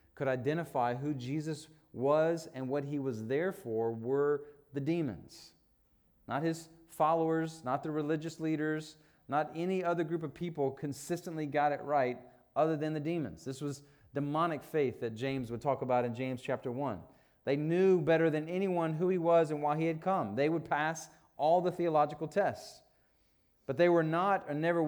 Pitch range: 140-170 Hz